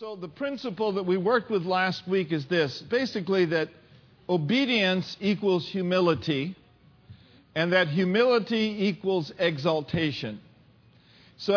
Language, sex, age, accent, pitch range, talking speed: English, male, 50-69, American, 160-215 Hz, 115 wpm